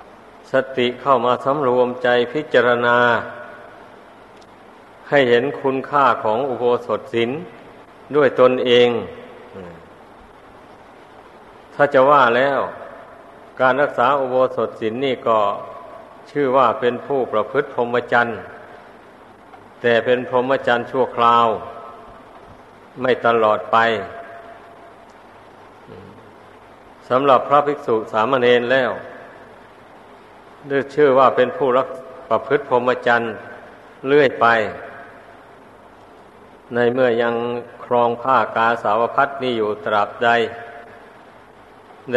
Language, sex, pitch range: Thai, male, 115-130 Hz